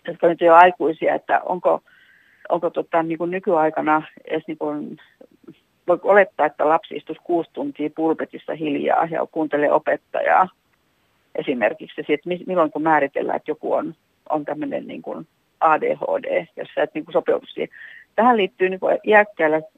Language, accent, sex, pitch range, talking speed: Finnish, native, female, 150-175 Hz, 125 wpm